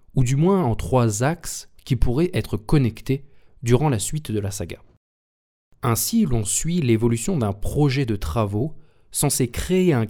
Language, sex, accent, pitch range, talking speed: French, male, French, 105-140 Hz, 160 wpm